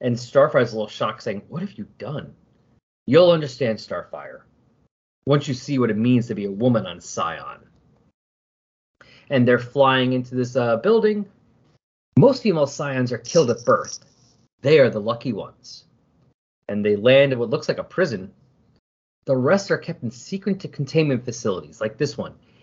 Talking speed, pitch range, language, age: 170 wpm, 115-150 Hz, English, 30-49